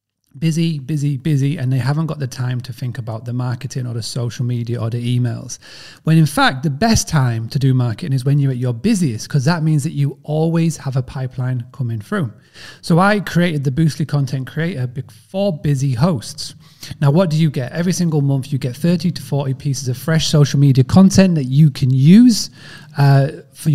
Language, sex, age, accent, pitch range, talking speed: English, male, 30-49, British, 130-160 Hz, 205 wpm